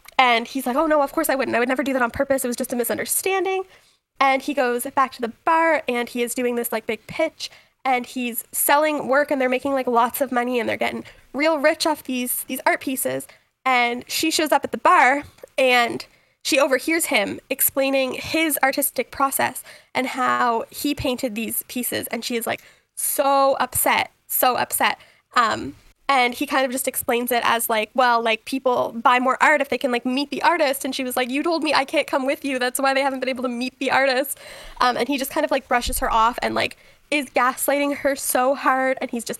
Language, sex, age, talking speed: English, female, 10-29, 230 wpm